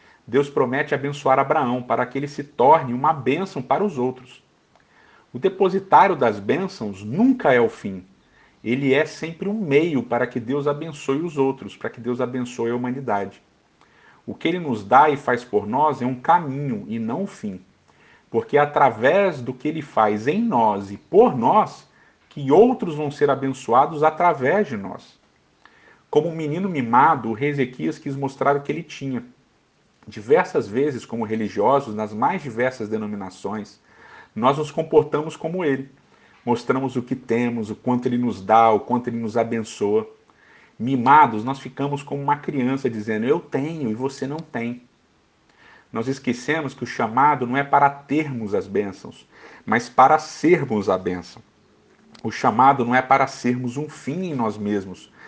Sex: male